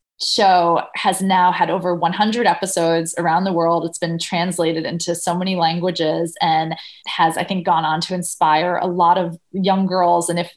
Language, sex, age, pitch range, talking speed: Hebrew, female, 20-39, 170-220 Hz, 180 wpm